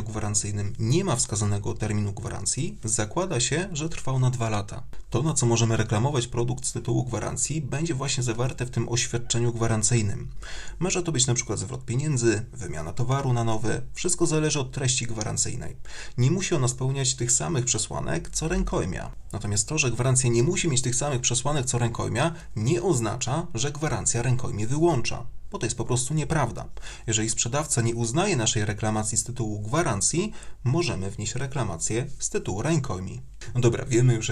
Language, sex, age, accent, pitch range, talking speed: Polish, male, 30-49, native, 115-145 Hz, 165 wpm